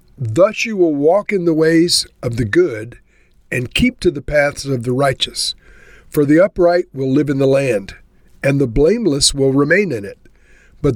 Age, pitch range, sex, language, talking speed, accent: 50-69, 120-150 Hz, male, English, 185 wpm, American